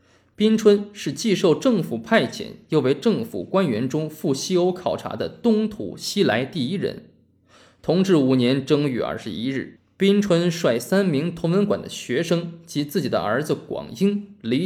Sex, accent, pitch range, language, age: male, native, 145-205 Hz, Chinese, 20-39